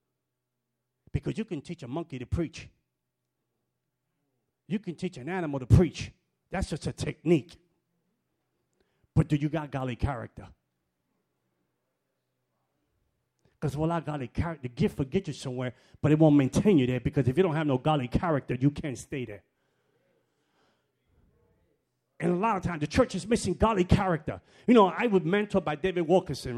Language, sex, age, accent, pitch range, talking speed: English, male, 40-59, American, 125-180 Hz, 165 wpm